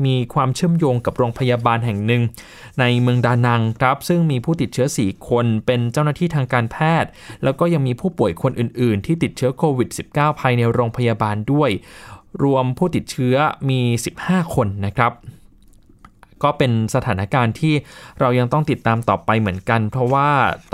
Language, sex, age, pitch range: Thai, male, 20-39, 110-135 Hz